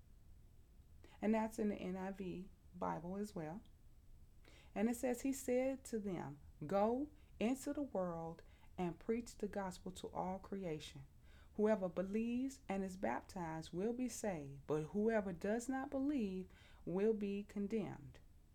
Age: 30-49